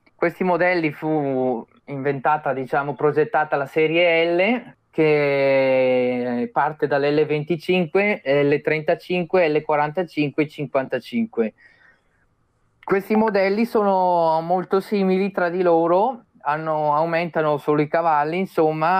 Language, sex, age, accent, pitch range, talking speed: Italian, male, 20-39, native, 135-165 Hz, 90 wpm